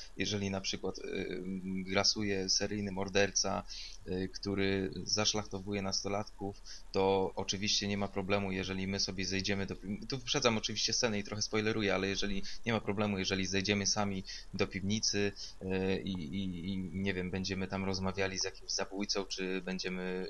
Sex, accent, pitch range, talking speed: male, native, 95-105 Hz, 145 wpm